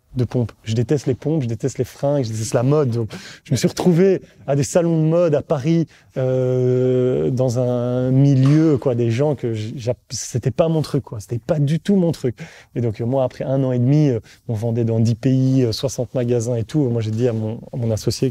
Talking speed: 235 wpm